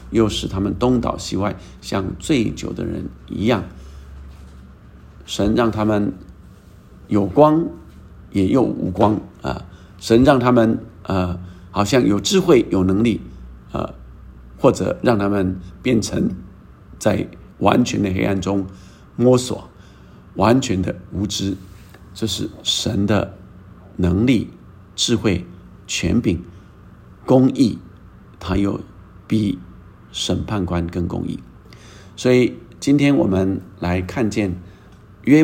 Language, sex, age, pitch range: Chinese, male, 50-69, 90-110 Hz